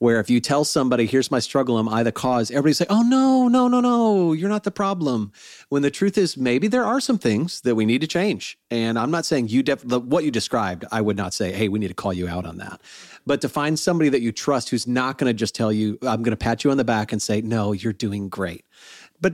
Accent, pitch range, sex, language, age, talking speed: American, 110-150 Hz, male, English, 40-59, 265 wpm